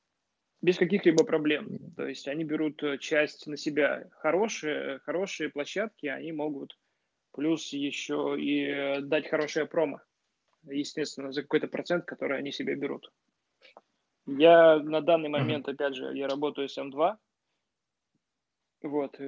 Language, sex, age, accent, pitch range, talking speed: Russian, male, 20-39, native, 140-165 Hz, 125 wpm